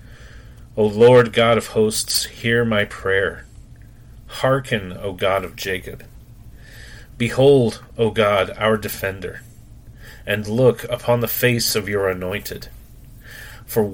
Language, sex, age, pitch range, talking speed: English, male, 40-59, 110-120 Hz, 115 wpm